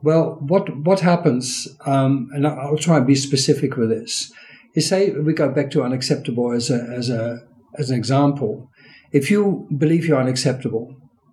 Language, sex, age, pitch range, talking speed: English, male, 50-69, 125-150 Hz, 170 wpm